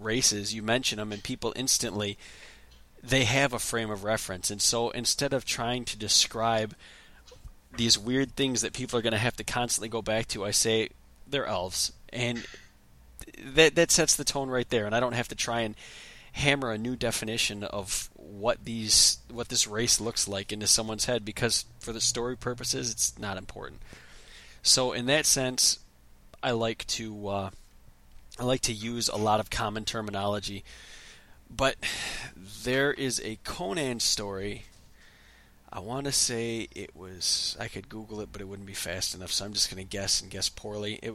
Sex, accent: male, American